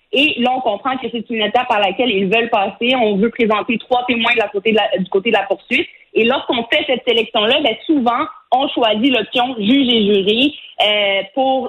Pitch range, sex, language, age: 210-255 Hz, female, French, 30-49